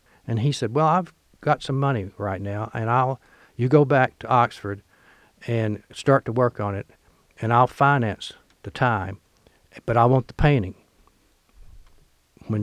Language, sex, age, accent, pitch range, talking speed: English, male, 60-79, American, 100-130 Hz, 160 wpm